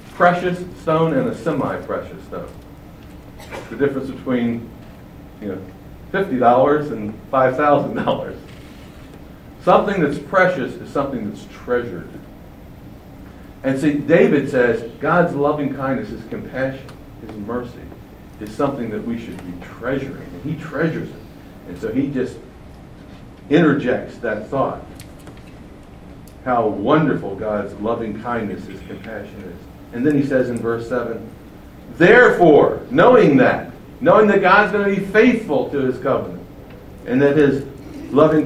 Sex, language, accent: male, English, American